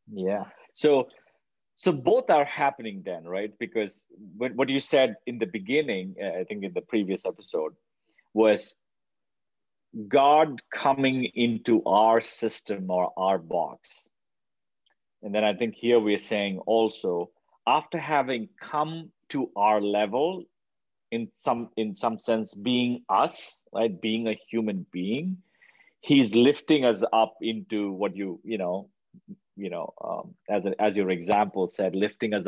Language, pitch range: English, 100-135 Hz